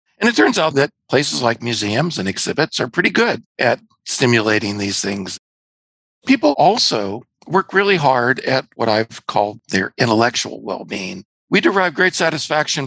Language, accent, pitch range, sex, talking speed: English, American, 115-180 Hz, male, 155 wpm